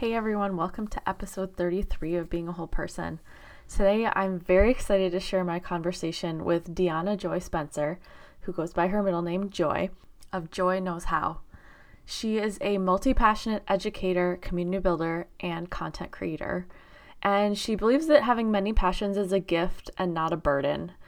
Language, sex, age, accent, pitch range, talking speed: English, female, 20-39, American, 175-205 Hz, 165 wpm